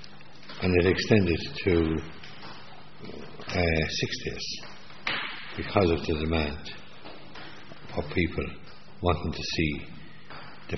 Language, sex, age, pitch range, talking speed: English, male, 60-79, 75-90 Hz, 90 wpm